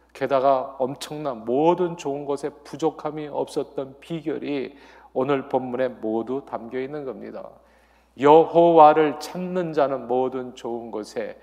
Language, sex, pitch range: Korean, male, 130-155 Hz